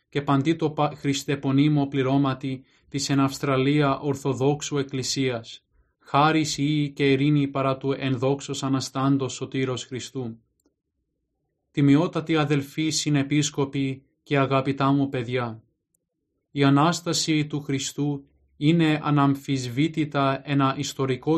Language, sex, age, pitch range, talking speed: Greek, male, 20-39, 135-150 Hz, 85 wpm